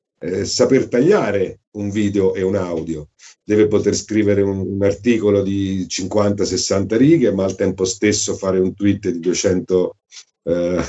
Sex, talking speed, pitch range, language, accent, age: male, 150 wpm, 100-120 Hz, Italian, native, 50-69